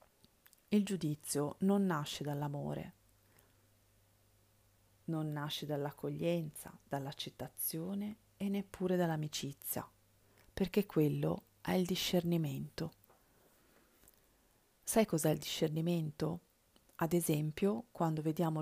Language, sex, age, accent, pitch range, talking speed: Italian, female, 40-59, native, 145-175 Hz, 80 wpm